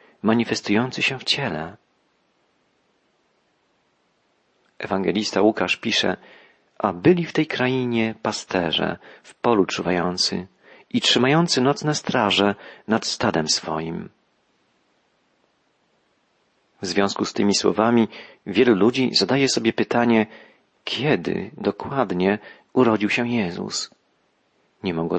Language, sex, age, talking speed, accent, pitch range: Polish, male, 40-59, 95 wpm, native, 100-125 Hz